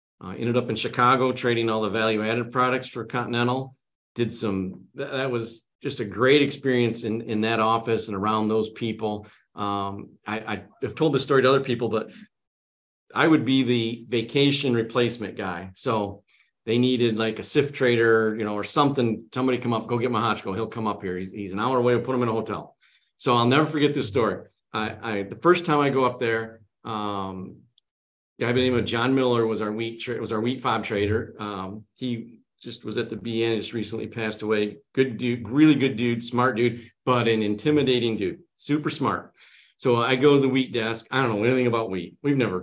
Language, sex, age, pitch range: English, male, 50-69, 110-130 Hz